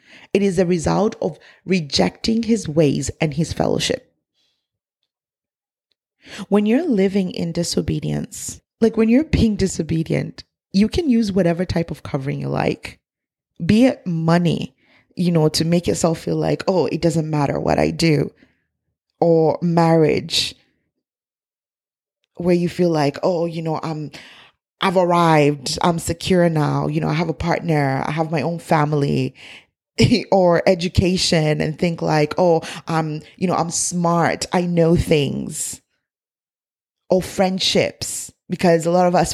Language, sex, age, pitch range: English, female, 20-39, 160-185 Hz